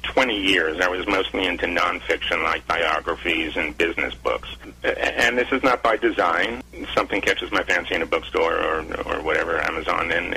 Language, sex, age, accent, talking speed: English, male, 40-59, American, 175 wpm